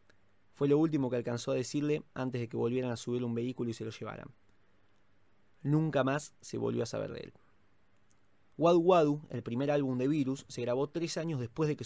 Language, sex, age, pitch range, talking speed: Spanish, male, 20-39, 120-170 Hz, 205 wpm